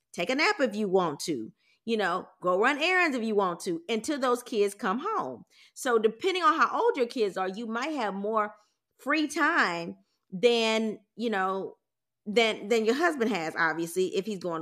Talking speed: 195 wpm